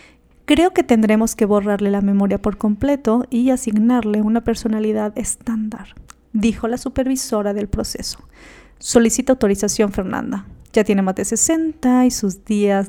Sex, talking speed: female, 140 wpm